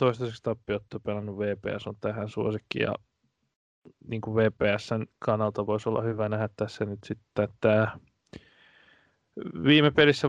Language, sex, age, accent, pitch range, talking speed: Finnish, male, 20-39, native, 110-125 Hz, 115 wpm